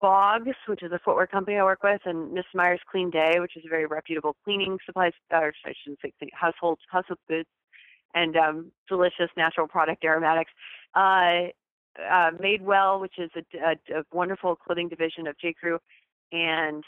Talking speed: 170 wpm